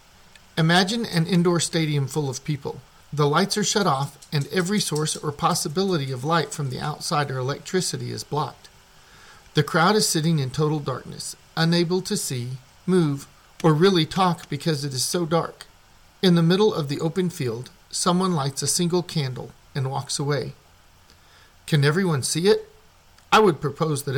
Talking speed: 170 wpm